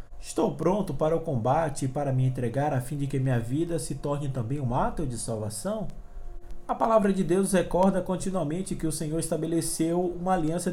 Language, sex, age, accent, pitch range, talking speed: Portuguese, male, 20-39, Brazilian, 140-185 Hz, 190 wpm